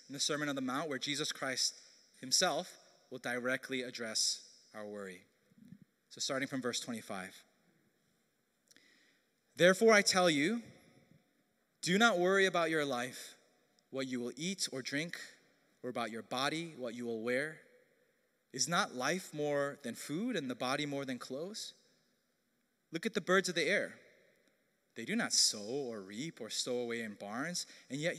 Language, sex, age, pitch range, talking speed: English, male, 20-39, 130-195 Hz, 160 wpm